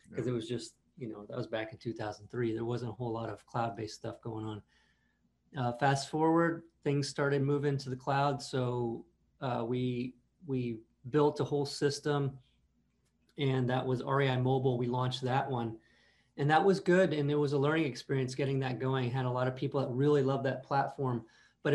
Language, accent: English, American